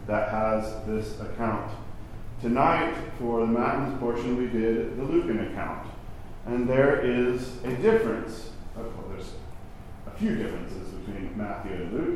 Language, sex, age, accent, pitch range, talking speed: English, male, 40-59, American, 105-125 Hz, 135 wpm